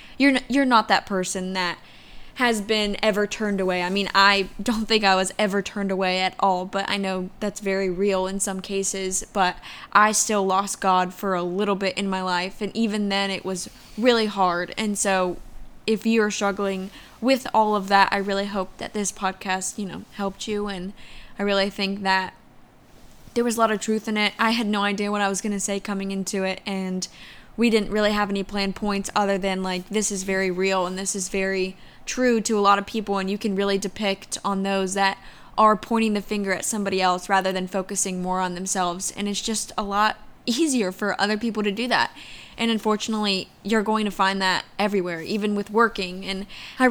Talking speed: 215 wpm